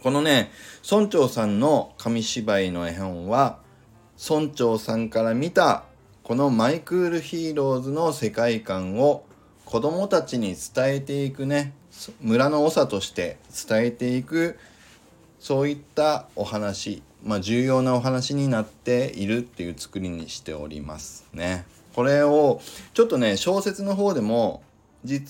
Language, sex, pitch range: Japanese, male, 100-140 Hz